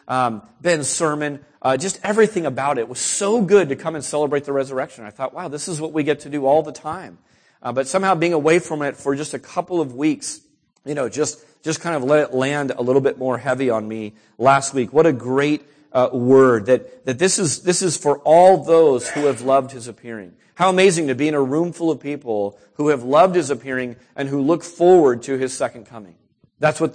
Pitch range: 135-195 Hz